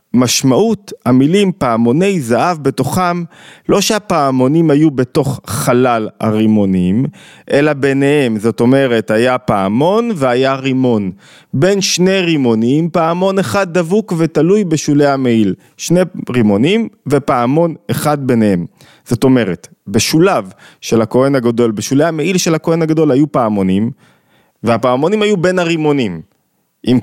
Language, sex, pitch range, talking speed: Hebrew, male, 120-165 Hz, 115 wpm